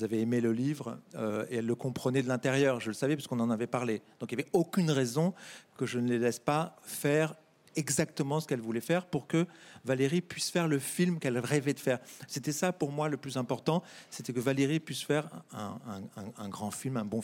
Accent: French